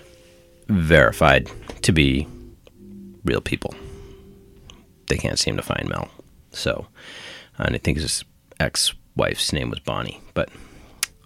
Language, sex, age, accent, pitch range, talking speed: English, male, 30-49, American, 75-105 Hz, 110 wpm